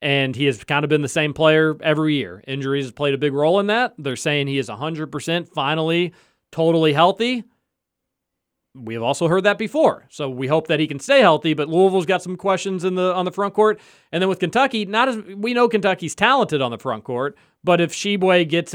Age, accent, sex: 40-59, American, male